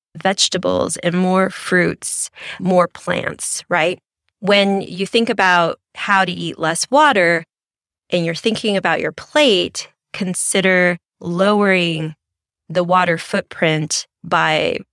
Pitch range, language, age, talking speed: 160-190 Hz, English, 20-39, 115 wpm